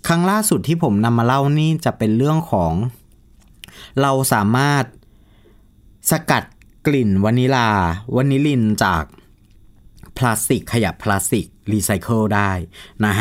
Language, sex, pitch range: Thai, male, 105-155 Hz